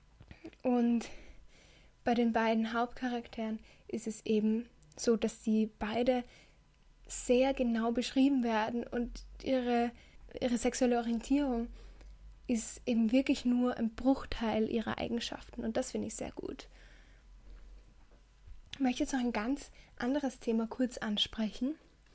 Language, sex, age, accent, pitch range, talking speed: German, female, 10-29, German, 220-255 Hz, 120 wpm